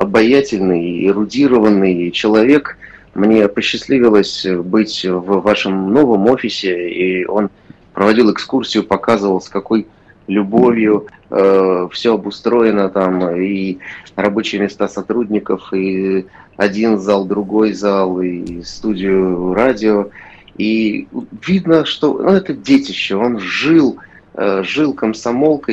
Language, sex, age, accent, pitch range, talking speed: Russian, male, 30-49, native, 100-135 Hz, 105 wpm